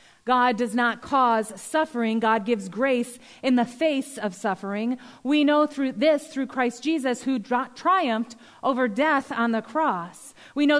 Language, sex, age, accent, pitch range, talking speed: English, female, 40-59, American, 230-275 Hz, 165 wpm